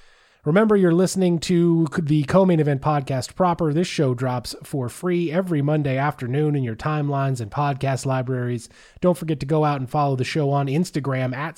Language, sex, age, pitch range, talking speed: English, male, 30-49, 130-165 Hz, 185 wpm